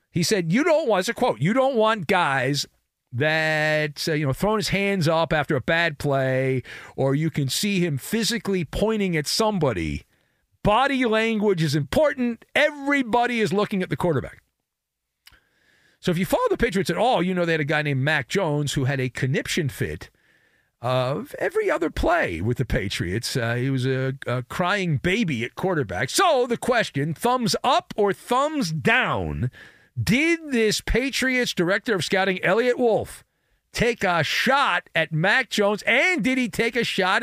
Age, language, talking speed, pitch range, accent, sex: 50-69, English, 175 wpm, 155-245 Hz, American, male